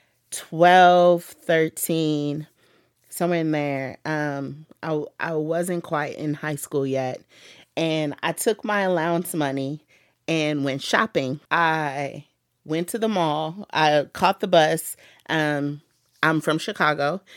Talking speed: 125 wpm